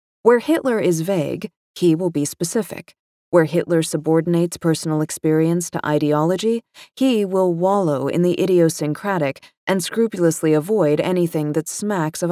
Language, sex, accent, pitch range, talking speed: English, female, American, 155-190 Hz, 135 wpm